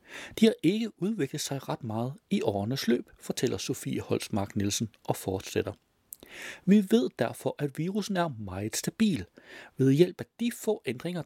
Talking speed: 155 wpm